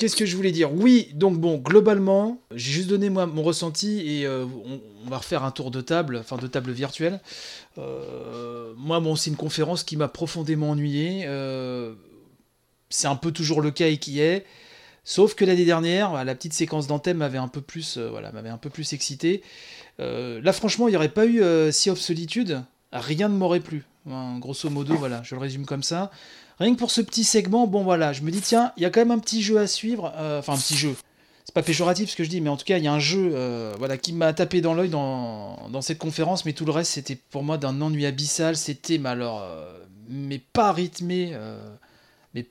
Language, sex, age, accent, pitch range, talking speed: French, male, 30-49, French, 140-190 Hz, 235 wpm